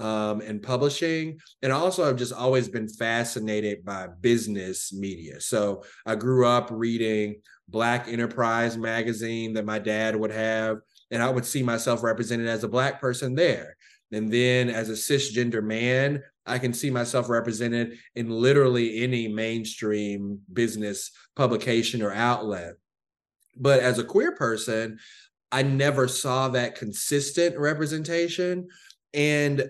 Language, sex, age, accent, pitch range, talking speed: English, male, 20-39, American, 110-130 Hz, 135 wpm